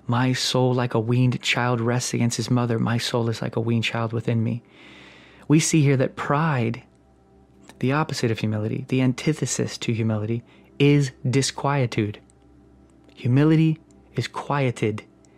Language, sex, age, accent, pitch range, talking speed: English, male, 20-39, American, 110-135 Hz, 145 wpm